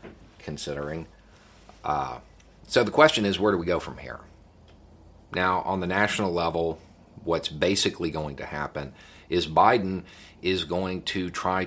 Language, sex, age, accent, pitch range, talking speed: English, male, 40-59, American, 80-95 Hz, 145 wpm